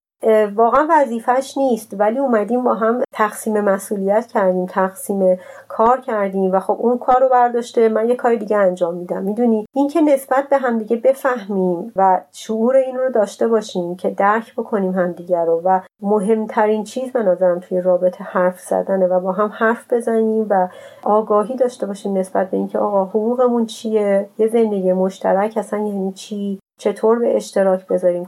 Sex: female